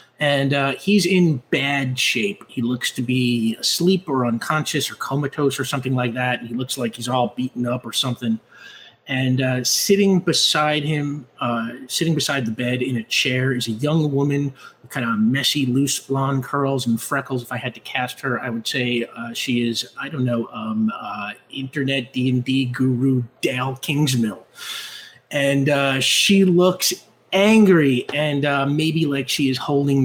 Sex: male